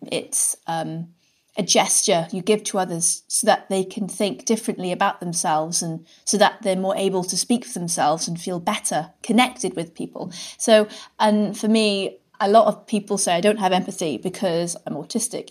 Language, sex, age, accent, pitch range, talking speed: English, female, 30-49, British, 170-215 Hz, 185 wpm